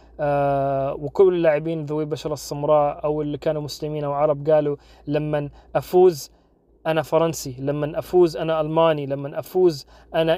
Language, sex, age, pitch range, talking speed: Arabic, male, 30-49, 145-170 Hz, 140 wpm